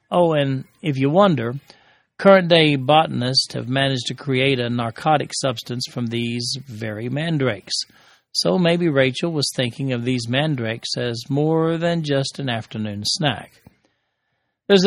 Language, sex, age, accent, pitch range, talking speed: English, male, 40-59, American, 120-150 Hz, 135 wpm